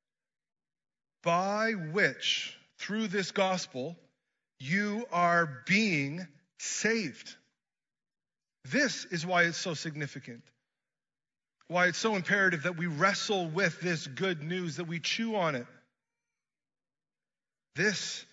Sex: male